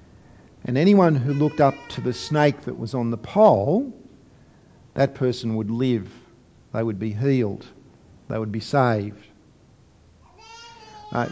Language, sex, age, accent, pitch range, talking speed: English, male, 50-69, Australian, 115-145 Hz, 140 wpm